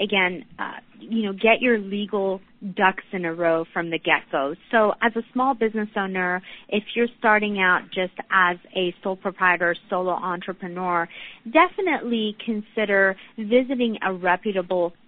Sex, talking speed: female, 145 wpm